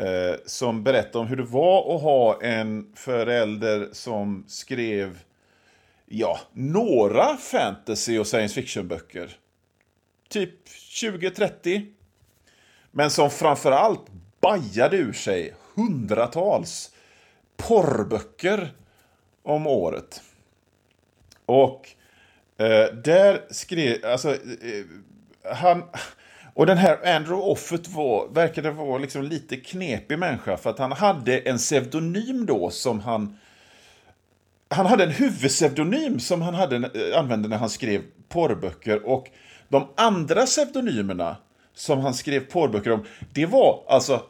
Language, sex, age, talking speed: Swedish, male, 40-59, 110 wpm